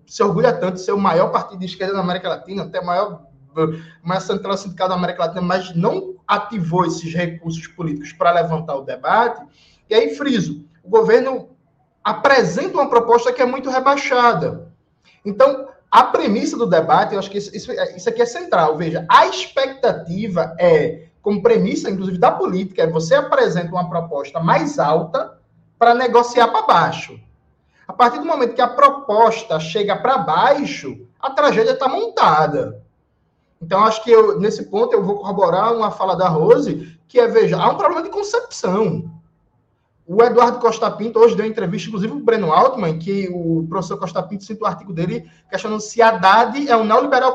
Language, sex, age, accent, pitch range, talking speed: Portuguese, male, 20-39, Brazilian, 175-245 Hz, 175 wpm